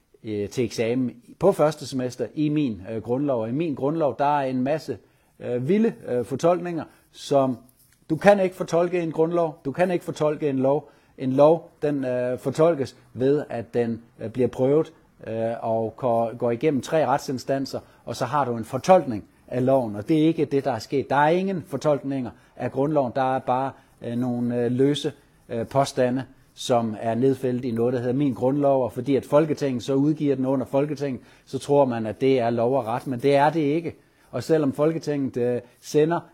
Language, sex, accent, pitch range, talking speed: Danish, male, native, 125-155 Hz, 180 wpm